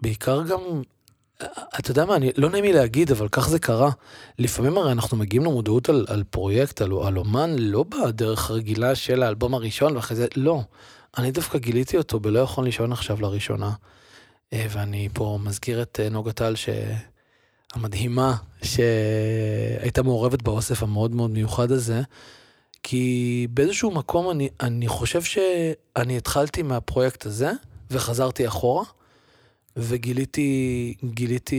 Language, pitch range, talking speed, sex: Hebrew, 110-130 Hz, 135 wpm, male